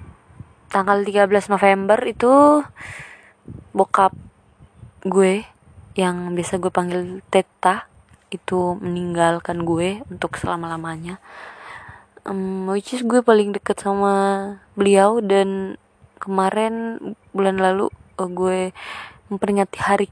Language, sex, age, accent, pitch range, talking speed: Indonesian, female, 20-39, native, 180-205 Hz, 90 wpm